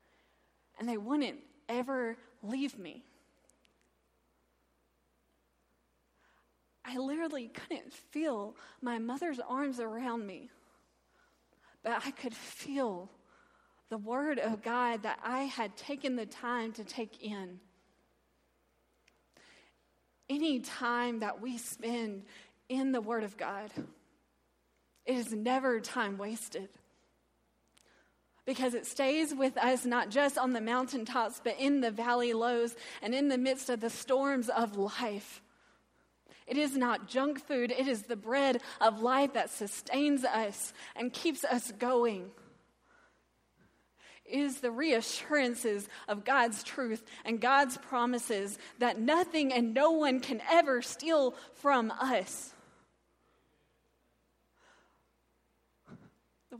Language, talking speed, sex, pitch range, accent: English, 115 wpm, female, 225-270 Hz, American